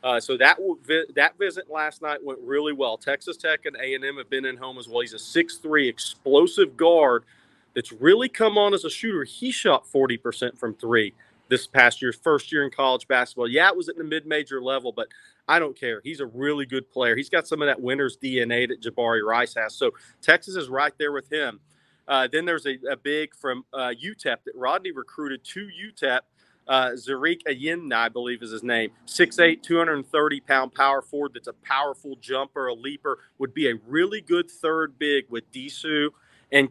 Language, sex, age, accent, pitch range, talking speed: English, male, 40-59, American, 130-165 Hz, 200 wpm